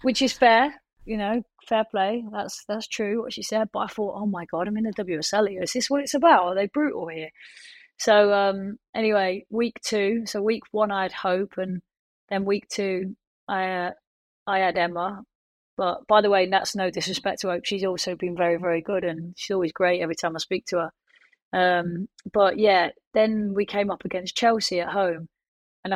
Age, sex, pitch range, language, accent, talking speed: 30-49, female, 180-215 Hz, English, British, 210 wpm